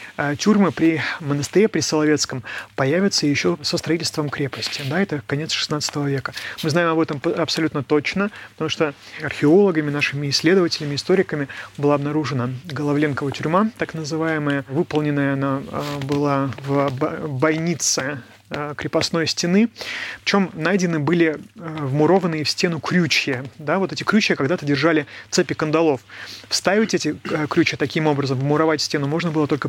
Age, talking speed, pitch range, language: 30-49, 130 wpm, 145-175 Hz, Russian